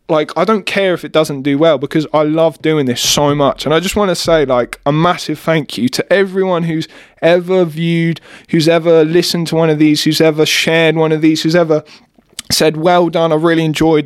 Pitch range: 145-180 Hz